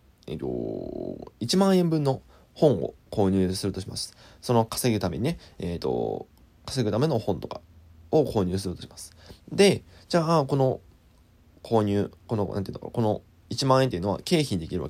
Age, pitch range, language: 20-39, 95-140 Hz, Japanese